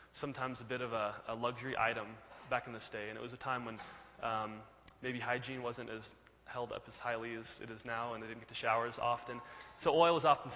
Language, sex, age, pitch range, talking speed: English, male, 20-39, 110-130 Hz, 245 wpm